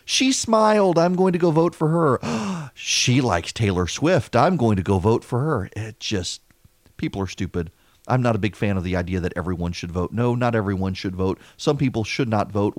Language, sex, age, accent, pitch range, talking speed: English, male, 40-59, American, 110-165 Hz, 220 wpm